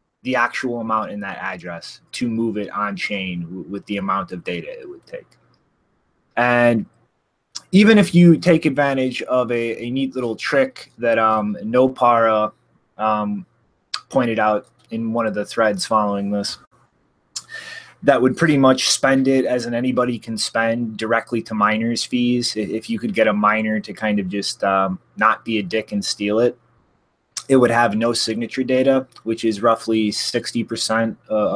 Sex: male